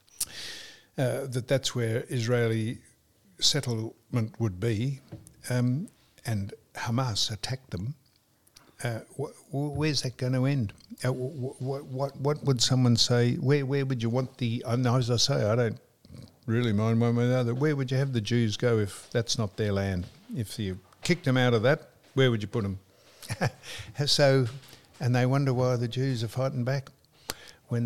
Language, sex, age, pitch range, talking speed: English, male, 60-79, 110-130 Hz, 180 wpm